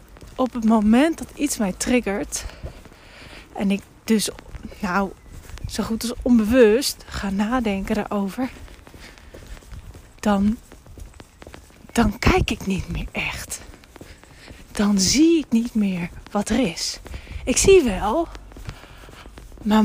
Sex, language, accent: female, Dutch, Dutch